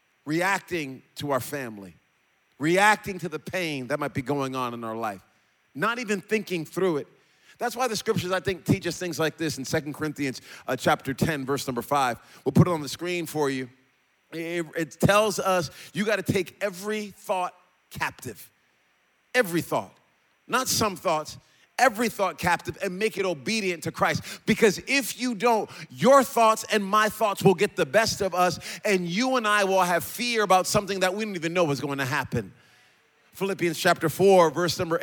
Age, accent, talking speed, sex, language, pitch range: 30-49, American, 190 wpm, male, English, 155-200 Hz